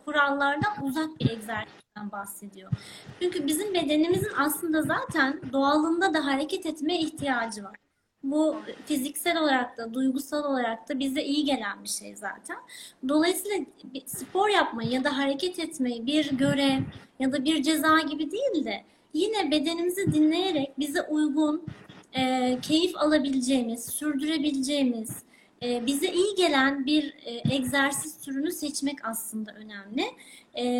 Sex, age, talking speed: female, 30-49, 125 wpm